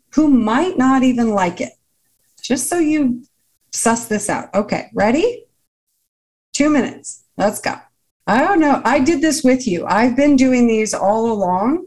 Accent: American